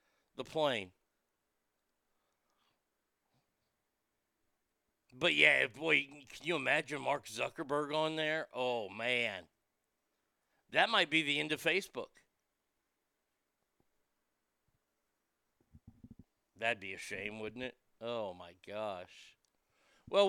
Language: English